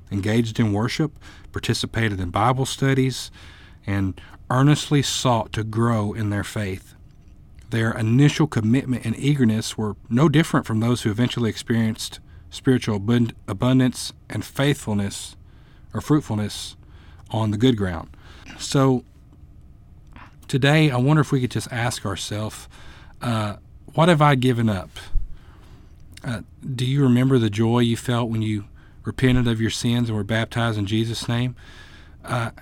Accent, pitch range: American, 105-125 Hz